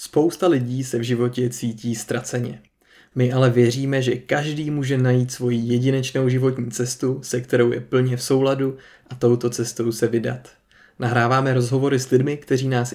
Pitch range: 125-135 Hz